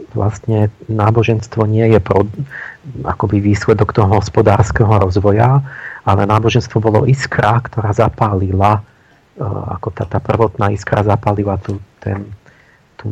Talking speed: 115 wpm